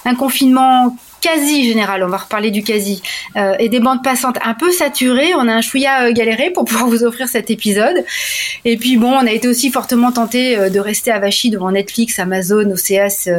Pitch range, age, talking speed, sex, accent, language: 200-265 Hz, 30-49, 210 wpm, female, French, French